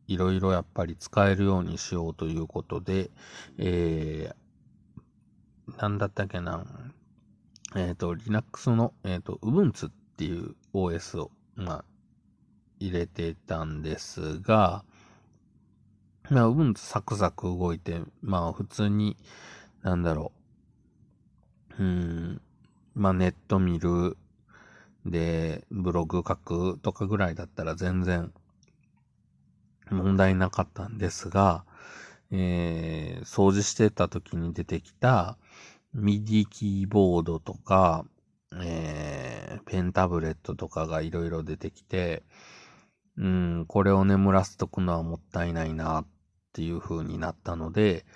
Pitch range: 85-100 Hz